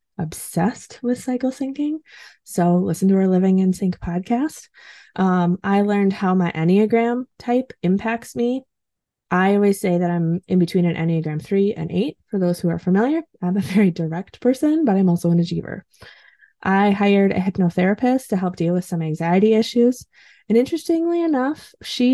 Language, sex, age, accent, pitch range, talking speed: English, female, 20-39, American, 175-235 Hz, 170 wpm